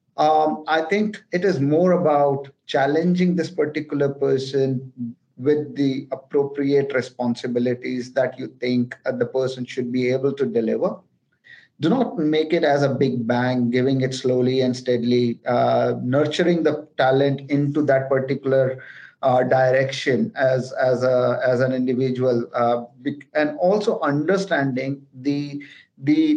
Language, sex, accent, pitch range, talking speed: English, male, Indian, 130-155 Hz, 135 wpm